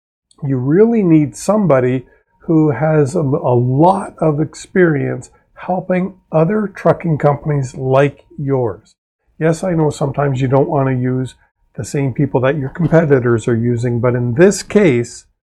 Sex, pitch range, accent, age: male, 135-170 Hz, American, 50-69